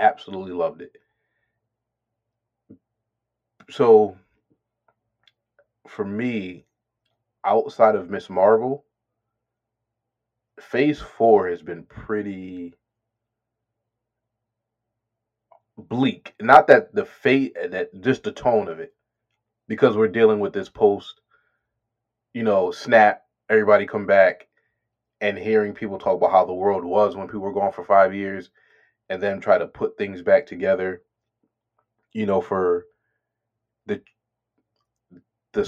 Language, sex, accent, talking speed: English, male, American, 115 wpm